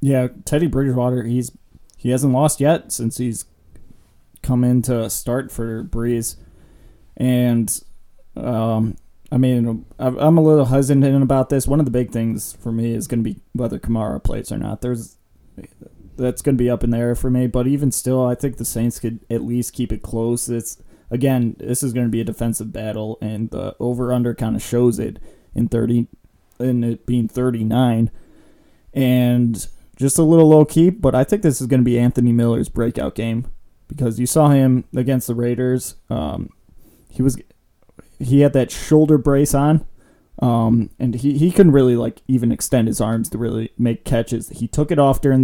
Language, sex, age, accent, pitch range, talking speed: English, male, 20-39, American, 115-130 Hz, 190 wpm